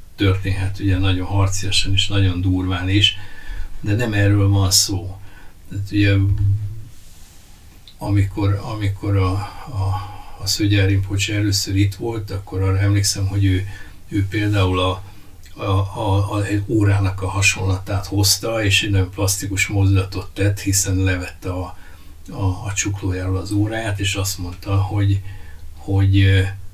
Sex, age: male, 60-79